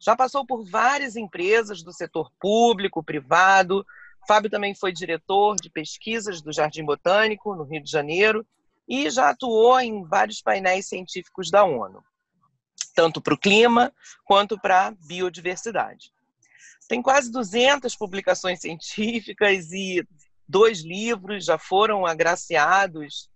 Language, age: Portuguese, 40-59